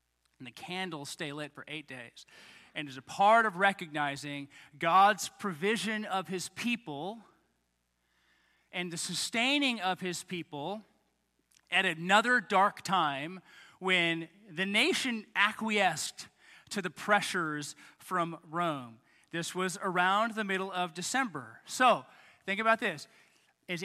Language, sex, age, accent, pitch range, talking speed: English, male, 30-49, American, 175-230 Hz, 125 wpm